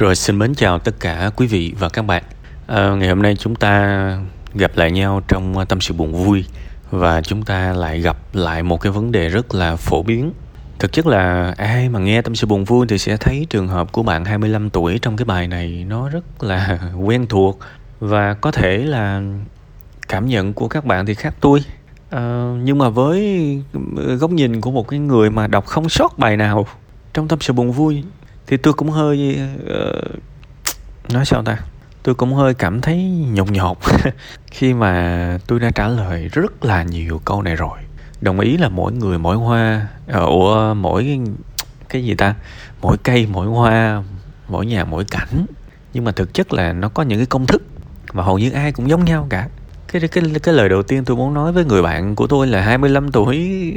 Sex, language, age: male, Vietnamese, 20-39